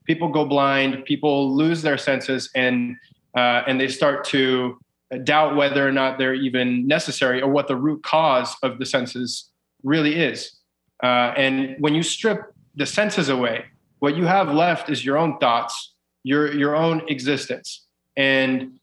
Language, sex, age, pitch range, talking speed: English, male, 30-49, 135-165 Hz, 165 wpm